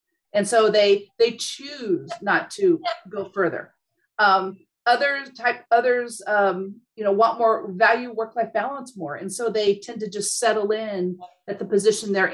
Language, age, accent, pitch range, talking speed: English, 40-59, American, 195-245 Hz, 165 wpm